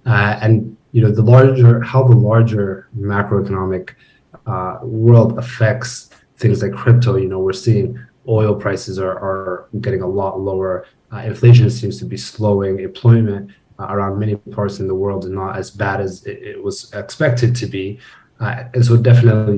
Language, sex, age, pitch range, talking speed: English, male, 20-39, 95-120 Hz, 175 wpm